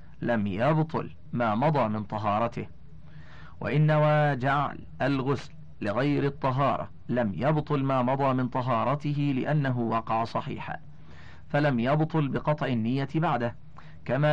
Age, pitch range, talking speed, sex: 40-59, 120-150 Hz, 115 wpm, male